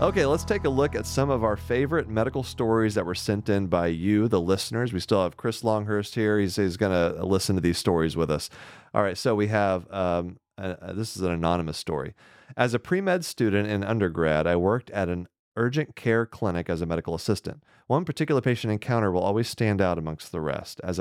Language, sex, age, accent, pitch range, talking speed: English, male, 30-49, American, 90-125 Hz, 215 wpm